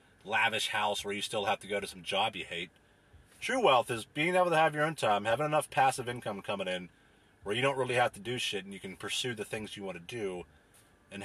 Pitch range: 100-150 Hz